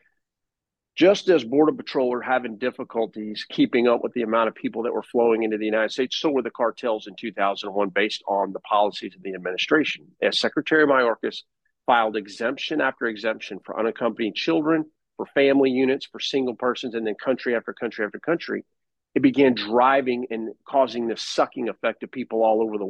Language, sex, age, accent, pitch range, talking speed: English, male, 50-69, American, 115-145 Hz, 185 wpm